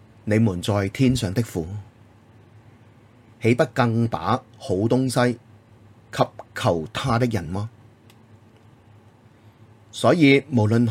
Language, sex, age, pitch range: Chinese, male, 30-49, 110-140 Hz